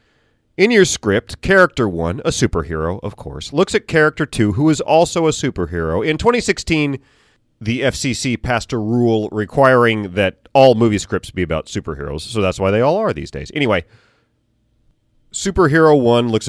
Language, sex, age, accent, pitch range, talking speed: English, male, 30-49, American, 100-145 Hz, 165 wpm